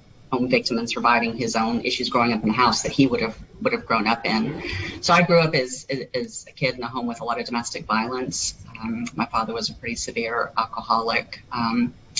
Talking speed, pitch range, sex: 225 wpm, 115-140 Hz, female